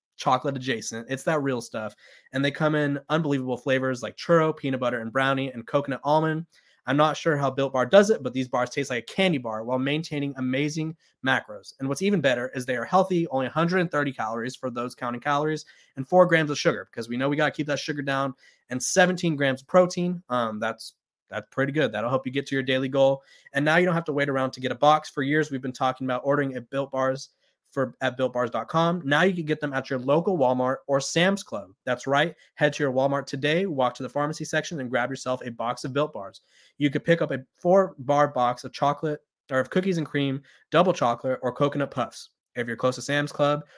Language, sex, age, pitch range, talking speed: English, male, 20-39, 130-155 Hz, 235 wpm